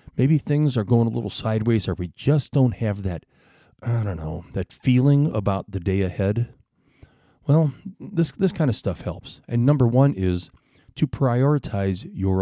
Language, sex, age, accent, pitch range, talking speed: English, male, 40-59, American, 95-125 Hz, 175 wpm